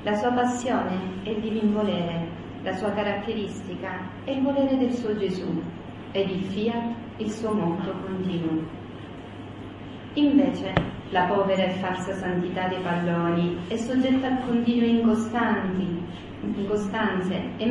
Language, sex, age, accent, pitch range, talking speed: Italian, female, 40-59, native, 185-235 Hz, 125 wpm